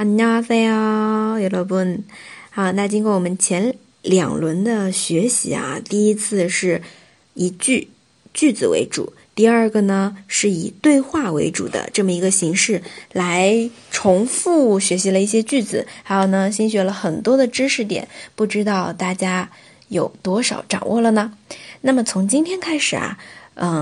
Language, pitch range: Chinese, 185-245 Hz